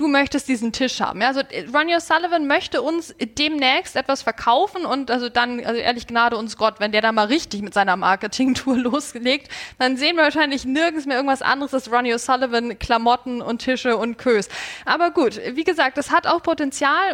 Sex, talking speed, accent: female, 190 wpm, German